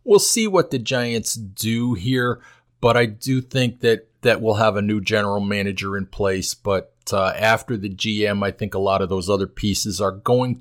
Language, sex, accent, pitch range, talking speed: English, male, American, 100-120 Hz, 205 wpm